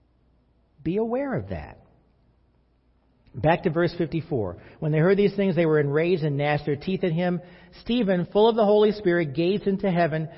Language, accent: English, American